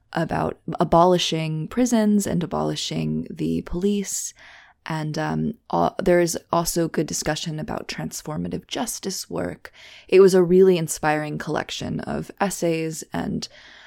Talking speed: 120 wpm